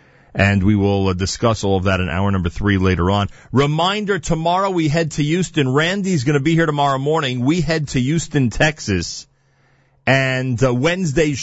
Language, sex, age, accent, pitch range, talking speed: English, male, 40-59, American, 95-135 Hz, 185 wpm